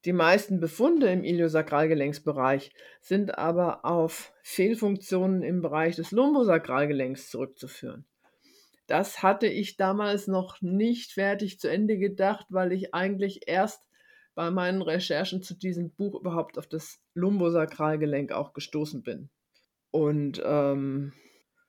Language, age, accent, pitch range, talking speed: German, 50-69, German, 155-195 Hz, 120 wpm